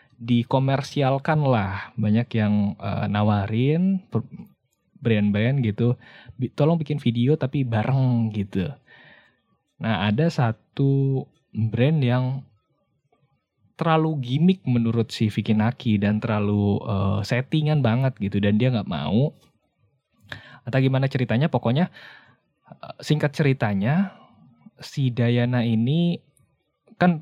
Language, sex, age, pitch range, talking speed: Indonesian, male, 20-39, 110-135 Hz, 100 wpm